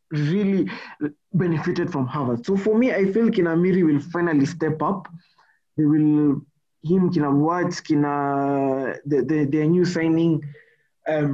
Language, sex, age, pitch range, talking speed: Swahili, male, 20-39, 140-180 Hz, 160 wpm